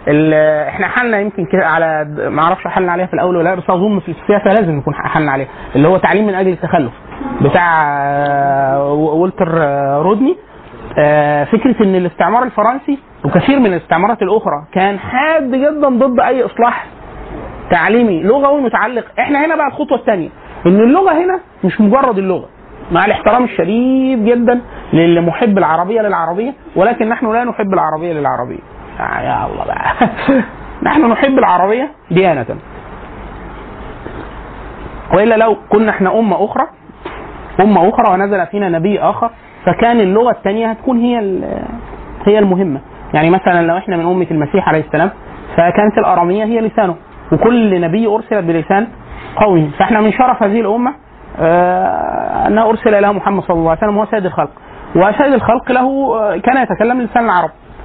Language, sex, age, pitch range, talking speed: Arabic, male, 30-49, 175-235 Hz, 145 wpm